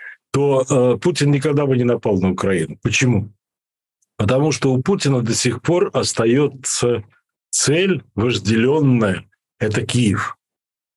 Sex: male